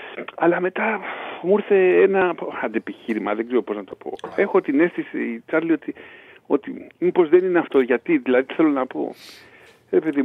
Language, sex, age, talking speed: Greek, male, 50-69, 165 wpm